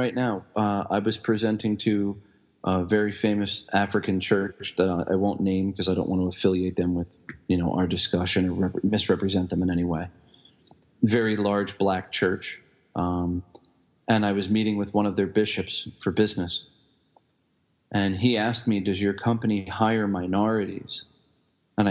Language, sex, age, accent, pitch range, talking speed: English, male, 40-59, American, 90-105 Hz, 165 wpm